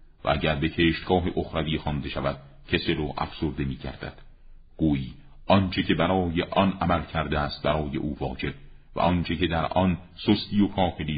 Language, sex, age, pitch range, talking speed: Persian, male, 50-69, 70-85 Hz, 160 wpm